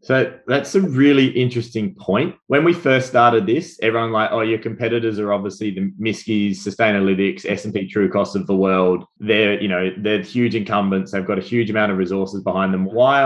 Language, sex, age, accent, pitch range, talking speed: English, male, 20-39, Australian, 100-120 Hz, 200 wpm